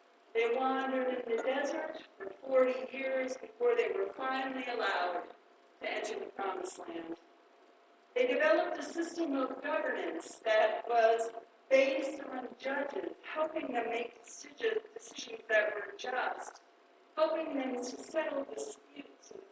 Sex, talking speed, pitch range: female, 130 wpm, 245-350 Hz